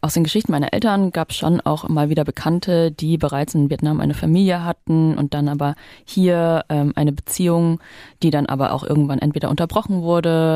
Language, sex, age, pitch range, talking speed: German, female, 30-49, 140-160 Hz, 190 wpm